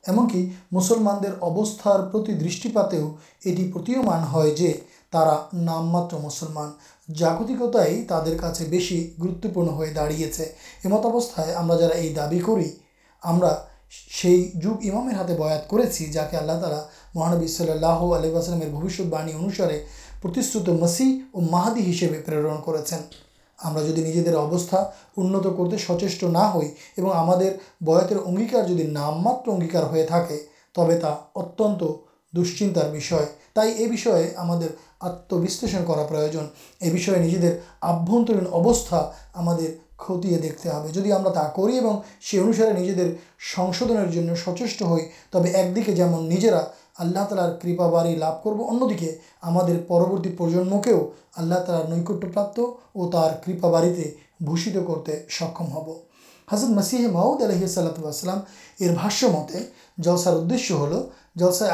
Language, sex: Urdu, male